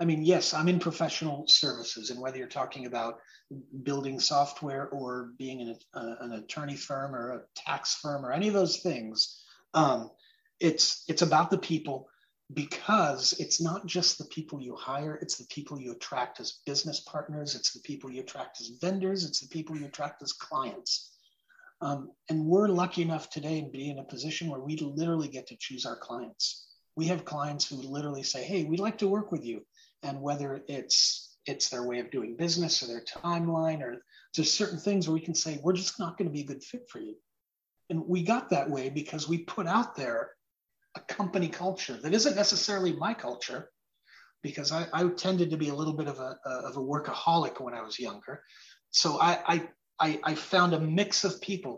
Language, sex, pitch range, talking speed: English, male, 140-180 Hz, 205 wpm